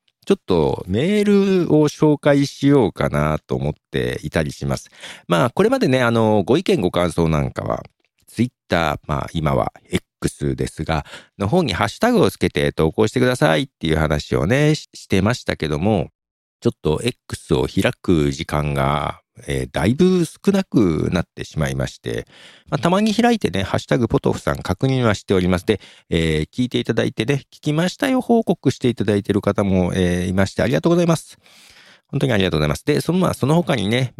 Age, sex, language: 50-69, male, Japanese